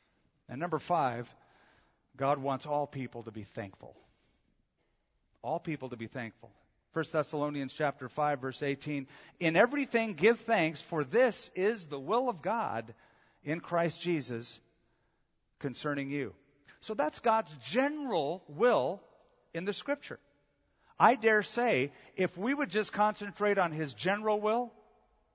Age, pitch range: 50-69, 135-175 Hz